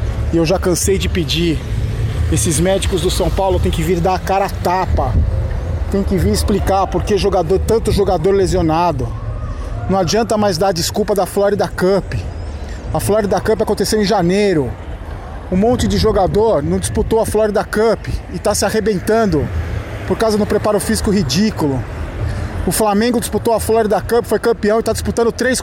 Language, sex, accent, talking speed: Portuguese, male, Brazilian, 175 wpm